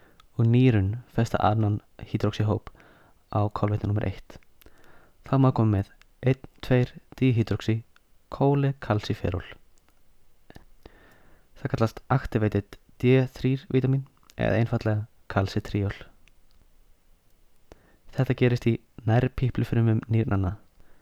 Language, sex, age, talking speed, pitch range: English, male, 20-39, 80 wpm, 105-120 Hz